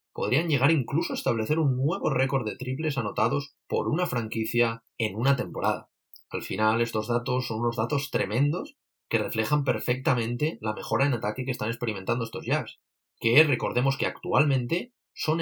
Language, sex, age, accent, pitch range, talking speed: Spanish, male, 30-49, Spanish, 115-155 Hz, 165 wpm